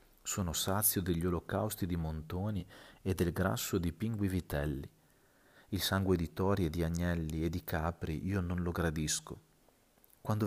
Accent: native